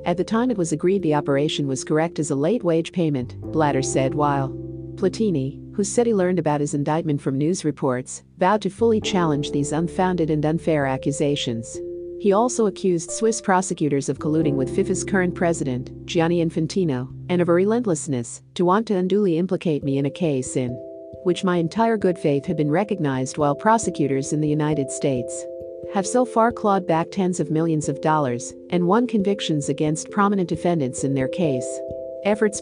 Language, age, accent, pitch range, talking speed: English, 50-69, American, 140-180 Hz, 180 wpm